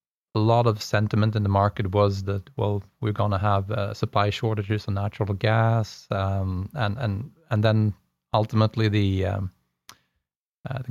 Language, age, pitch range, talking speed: English, 30-49, 100-115 Hz, 165 wpm